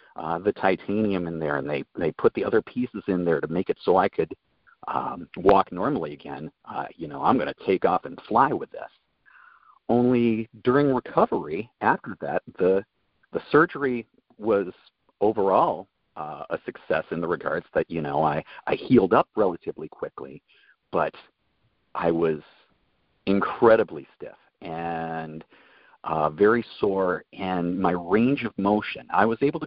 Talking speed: 160 wpm